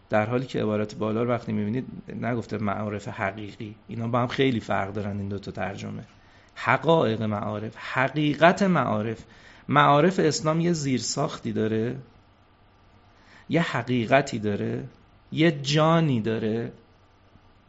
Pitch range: 105-135 Hz